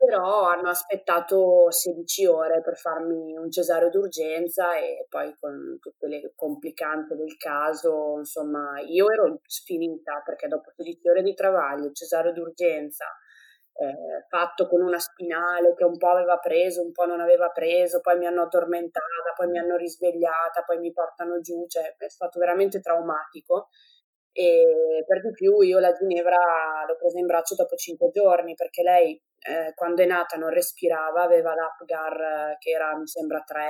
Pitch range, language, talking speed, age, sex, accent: 165-190 Hz, Italian, 160 wpm, 20-39, female, native